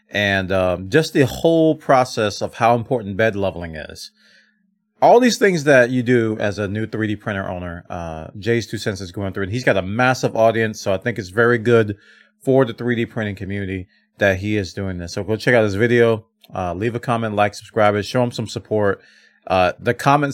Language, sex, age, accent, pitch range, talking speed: English, male, 30-49, American, 100-140 Hz, 210 wpm